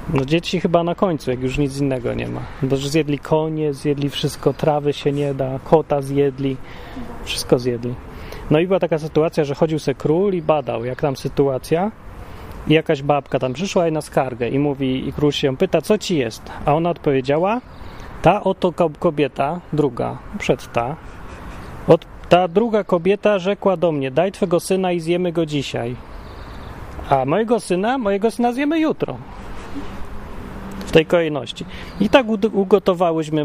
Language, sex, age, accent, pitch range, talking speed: Polish, male, 30-49, native, 135-180 Hz, 165 wpm